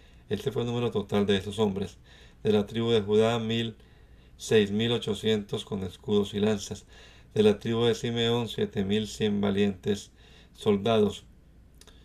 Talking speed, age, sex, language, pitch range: 155 wpm, 50-69, male, Spanish, 100-125 Hz